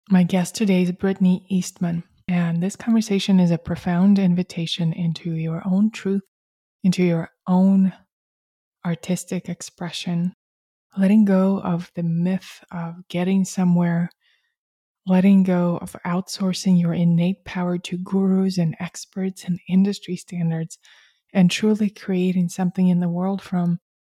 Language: English